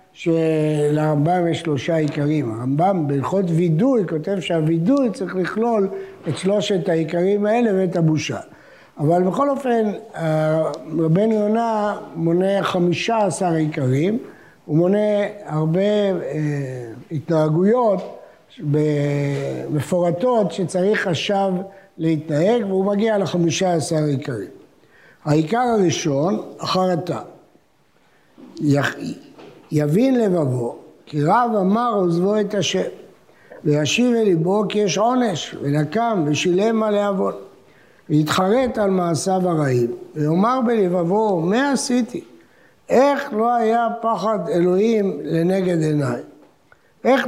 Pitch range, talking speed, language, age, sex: 155-210 Hz, 100 wpm, Hebrew, 60-79, male